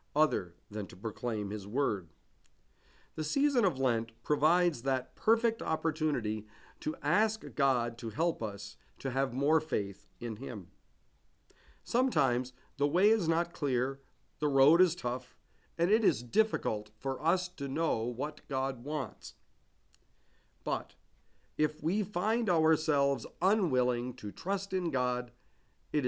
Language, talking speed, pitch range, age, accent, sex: English, 135 wpm, 115-160 Hz, 50-69, American, male